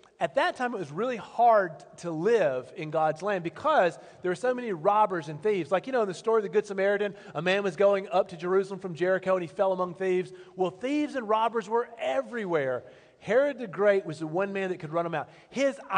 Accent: American